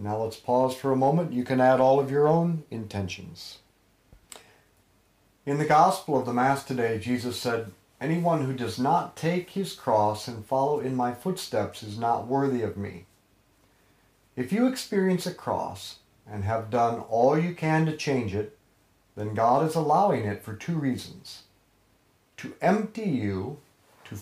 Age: 50-69